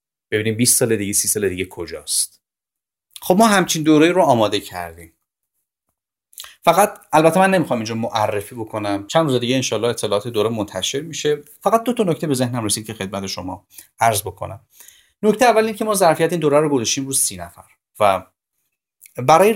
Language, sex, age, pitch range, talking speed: Persian, male, 30-49, 110-165 Hz, 170 wpm